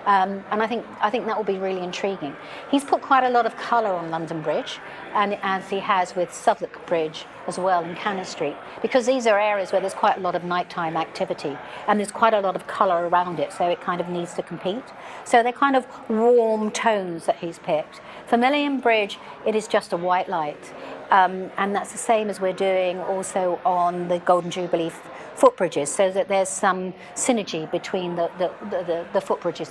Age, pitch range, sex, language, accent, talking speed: 50-69, 180-225 Hz, female, English, British, 210 wpm